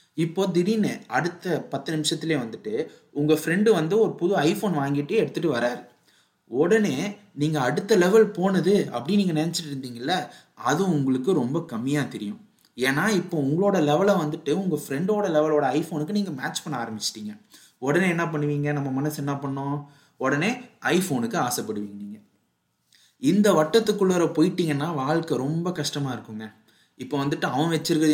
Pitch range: 135-180 Hz